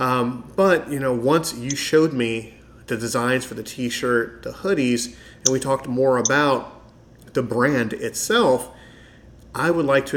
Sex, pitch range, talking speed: male, 115-130 Hz, 165 wpm